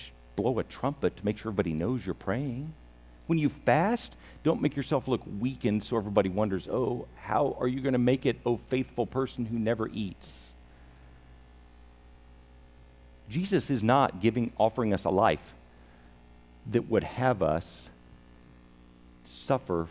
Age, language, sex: 50-69, English, male